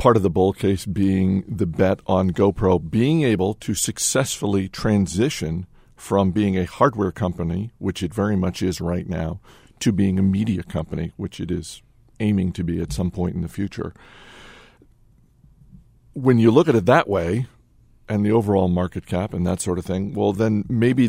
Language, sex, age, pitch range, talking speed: English, male, 50-69, 95-110 Hz, 180 wpm